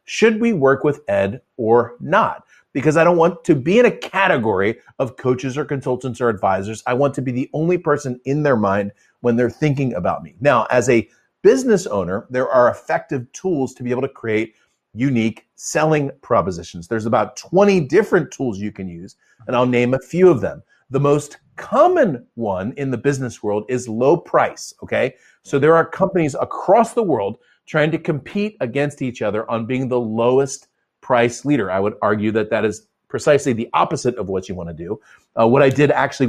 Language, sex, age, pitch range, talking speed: English, male, 40-59, 115-150 Hz, 200 wpm